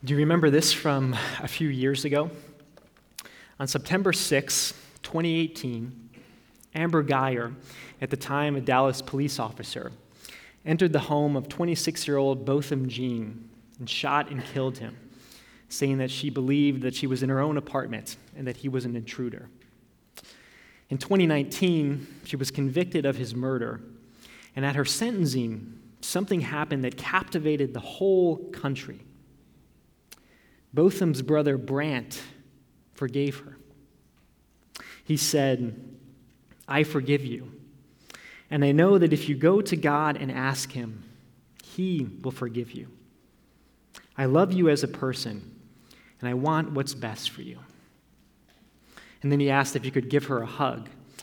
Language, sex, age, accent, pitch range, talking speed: English, male, 20-39, American, 130-150 Hz, 140 wpm